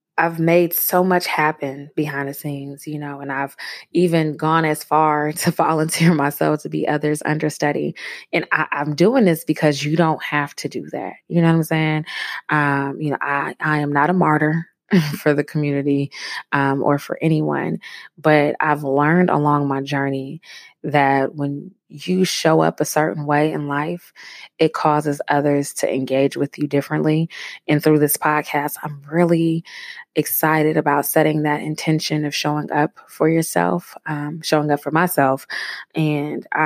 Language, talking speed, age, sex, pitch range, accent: English, 165 wpm, 20-39, female, 145-160 Hz, American